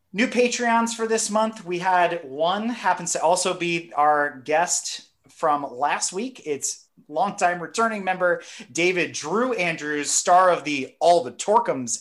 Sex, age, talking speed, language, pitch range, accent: male, 30-49, 150 wpm, English, 130-170 Hz, American